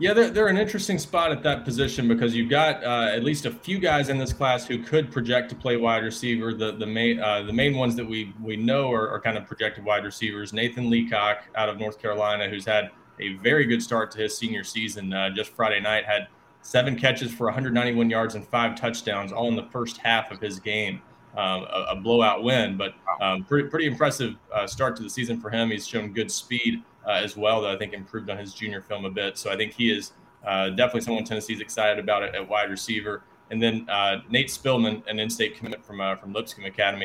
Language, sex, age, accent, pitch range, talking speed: English, male, 20-39, American, 105-125 Hz, 235 wpm